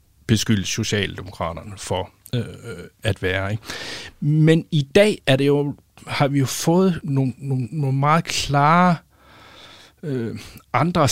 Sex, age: male, 60-79